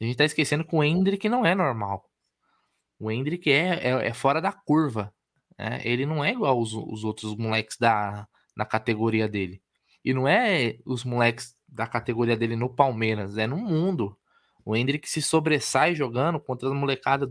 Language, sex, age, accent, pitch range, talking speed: Portuguese, male, 20-39, Brazilian, 115-150 Hz, 180 wpm